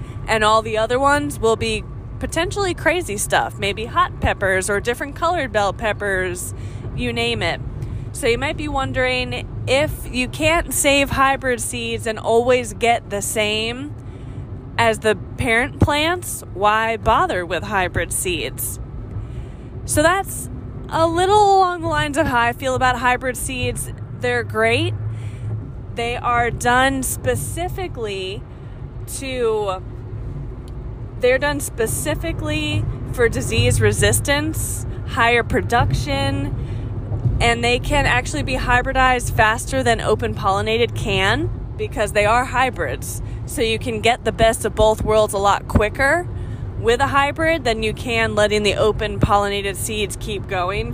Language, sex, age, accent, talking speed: English, female, 20-39, American, 135 wpm